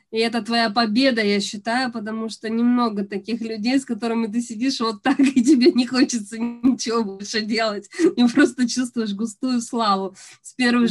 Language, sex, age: Russian, female, 20-39